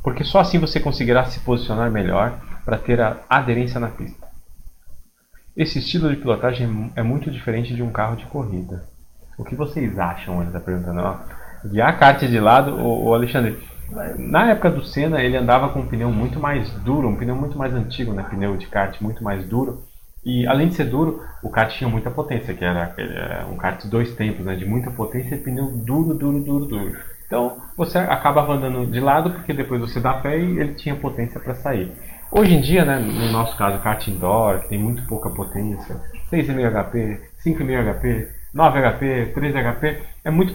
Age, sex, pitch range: 30-49, male, 105-140 Hz